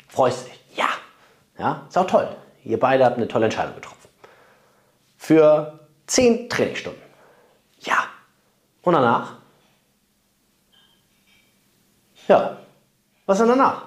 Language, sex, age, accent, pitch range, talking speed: German, male, 30-49, German, 155-240 Hz, 105 wpm